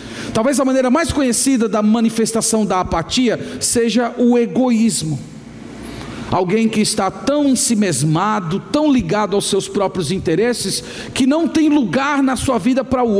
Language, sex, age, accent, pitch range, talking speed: Portuguese, male, 50-69, Brazilian, 215-255 Hz, 145 wpm